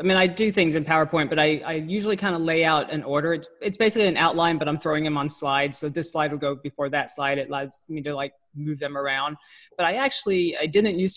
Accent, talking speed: American, 270 wpm